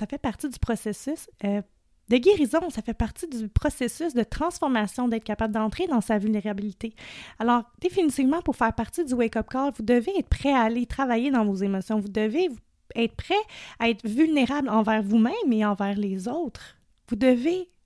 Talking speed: 180 wpm